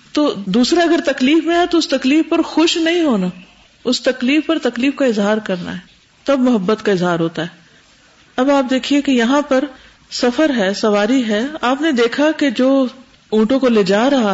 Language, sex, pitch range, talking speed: Urdu, female, 195-275 Hz, 195 wpm